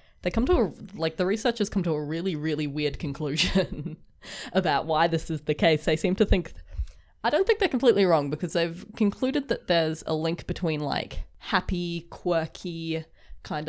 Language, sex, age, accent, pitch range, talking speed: English, female, 20-39, Australian, 150-180 Hz, 180 wpm